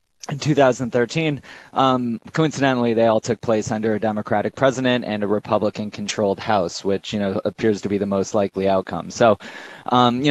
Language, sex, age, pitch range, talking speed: English, male, 30-49, 105-120 Hz, 170 wpm